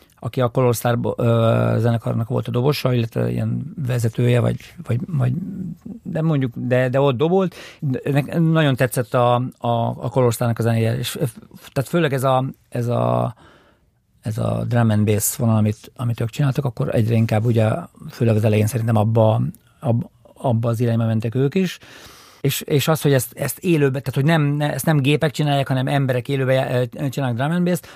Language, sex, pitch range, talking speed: Hungarian, male, 120-140 Hz, 180 wpm